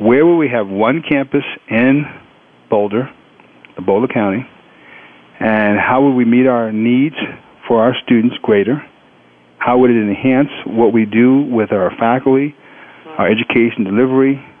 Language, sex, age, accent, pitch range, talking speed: English, male, 50-69, American, 110-130 Hz, 140 wpm